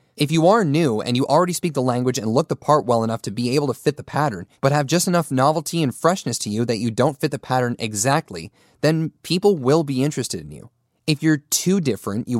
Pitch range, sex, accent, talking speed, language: 125-165 Hz, male, American, 245 wpm, English